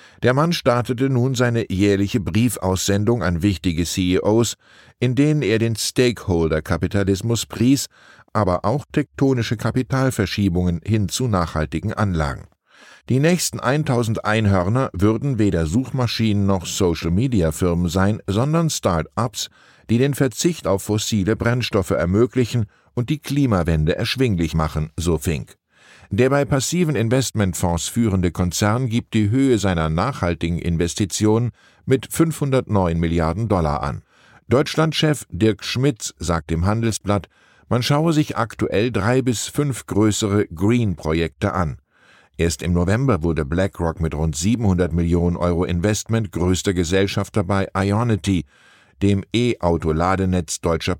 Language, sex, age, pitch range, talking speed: German, male, 10-29, 90-120 Hz, 120 wpm